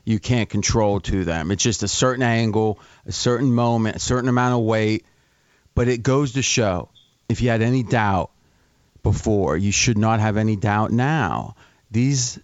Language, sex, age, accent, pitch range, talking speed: English, male, 40-59, American, 115-140 Hz, 180 wpm